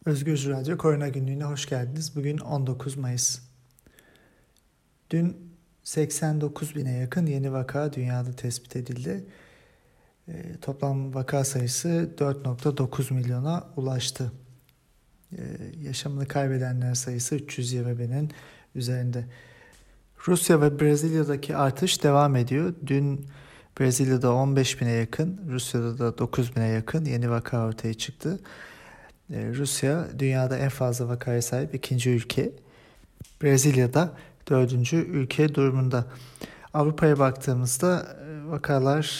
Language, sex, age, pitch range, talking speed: German, male, 40-59, 125-150 Hz, 105 wpm